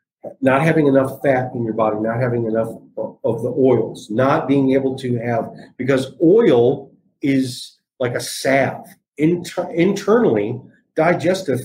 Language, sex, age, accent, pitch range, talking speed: English, male, 40-59, American, 125-160 Hz, 135 wpm